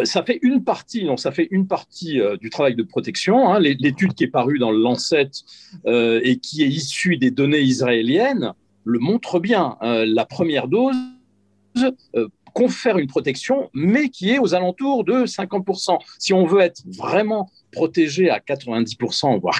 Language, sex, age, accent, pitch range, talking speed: Italian, male, 50-69, French, 115-195 Hz, 155 wpm